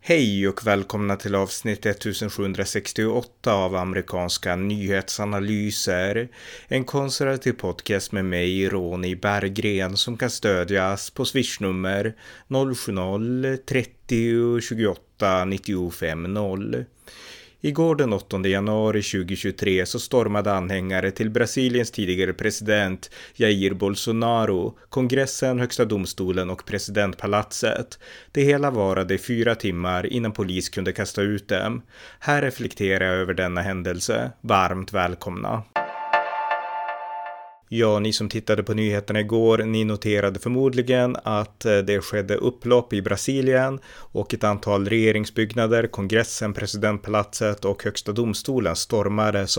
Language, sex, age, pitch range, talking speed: Swedish, male, 30-49, 100-120 Hz, 105 wpm